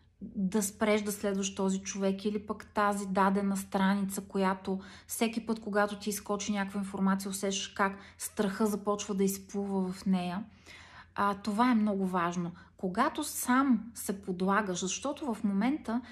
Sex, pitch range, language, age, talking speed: female, 190-235 Hz, Bulgarian, 30-49, 140 wpm